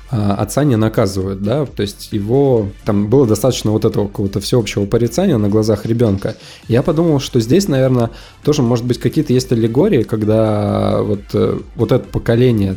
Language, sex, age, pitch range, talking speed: Russian, male, 20-39, 105-125 Hz, 160 wpm